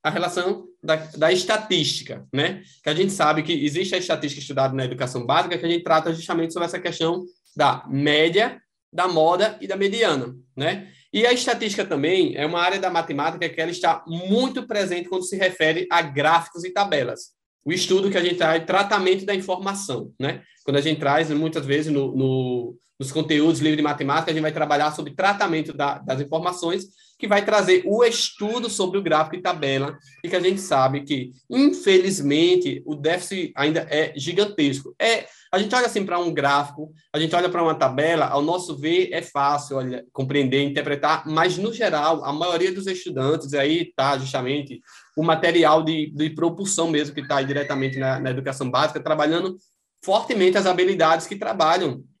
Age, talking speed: 20-39, 185 wpm